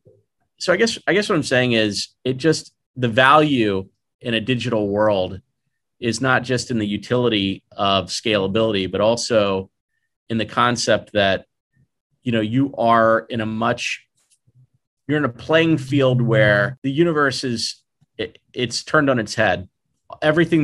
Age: 30-49